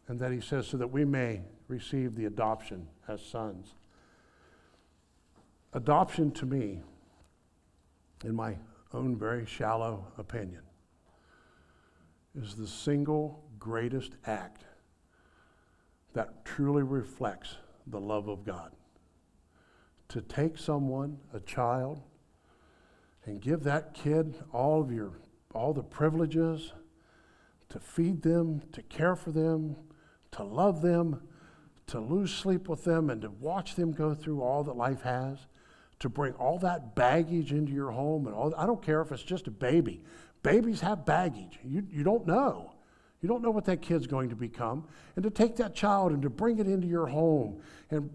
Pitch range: 115-170 Hz